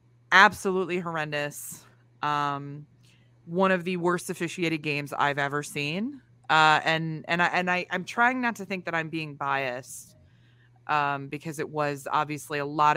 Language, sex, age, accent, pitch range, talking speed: English, female, 20-39, American, 135-165 Hz, 155 wpm